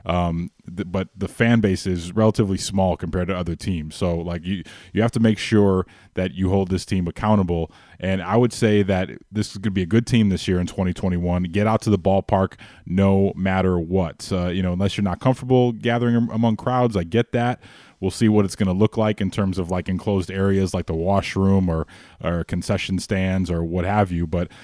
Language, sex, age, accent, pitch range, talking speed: English, male, 20-39, American, 90-105 Hz, 220 wpm